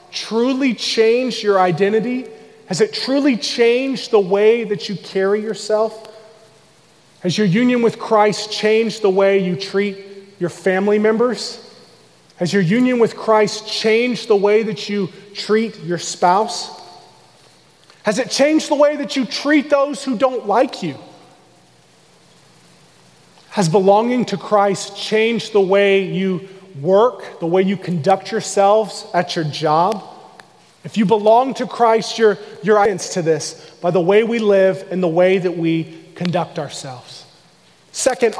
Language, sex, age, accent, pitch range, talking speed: English, male, 30-49, American, 190-230 Hz, 145 wpm